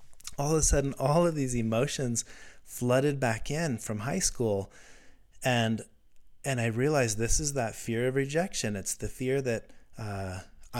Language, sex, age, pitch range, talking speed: English, male, 30-49, 105-135 Hz, 160 wpm